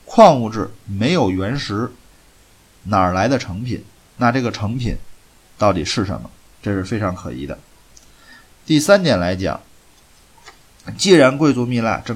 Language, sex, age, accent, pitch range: Chinese, male, 20-39, native, 95-125 Hz